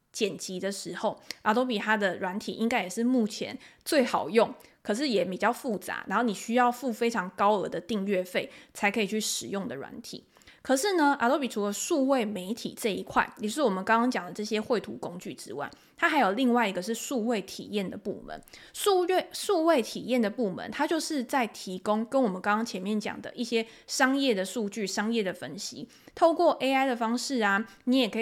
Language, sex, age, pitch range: Chinese, female, 20-39, 210-265 Hz